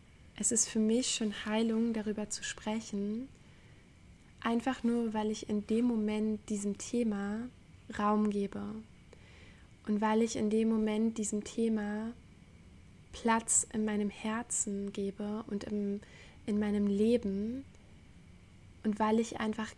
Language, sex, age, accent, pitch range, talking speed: German, female, 10-29, German, 200-225 Hz, 125 wpm